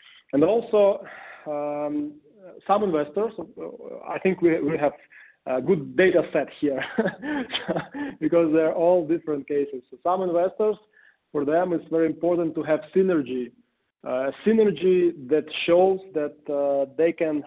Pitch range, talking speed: 145-185 Hz, 135 wpm